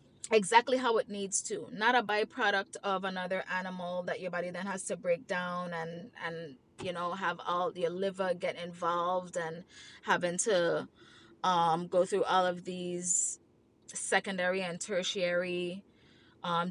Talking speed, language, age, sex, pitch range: 150 wpm, English, 20-39, female, 180-220 Hz